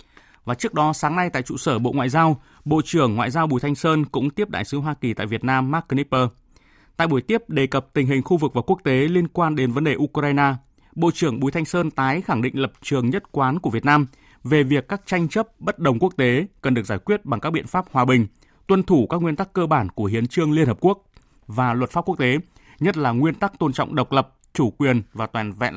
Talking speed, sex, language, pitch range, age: 260 wpm, male, Vietnamese, 125-160 Hz, 20-39